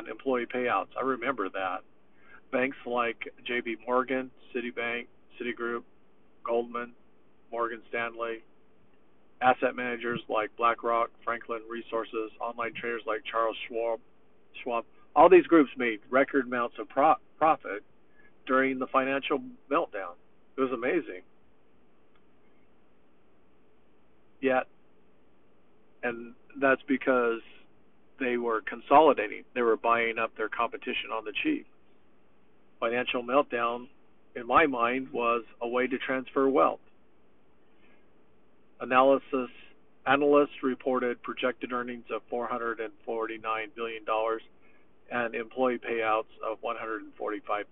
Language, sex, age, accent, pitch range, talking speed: English, male, 50-69, American, 115-130 Hz, 105 wpm